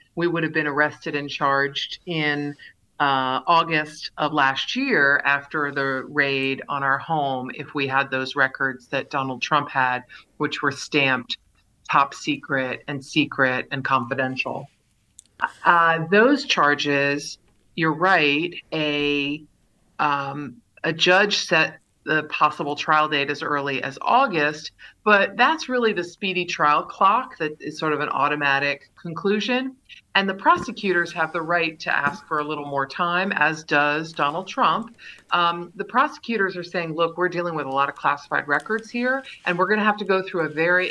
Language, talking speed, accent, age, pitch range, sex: English, 160 wpm, American, 50-69, 140-175 Hz, female